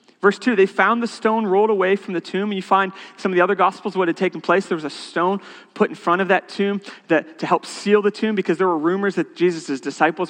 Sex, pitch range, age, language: male, 175-260 Hz, 30-49, English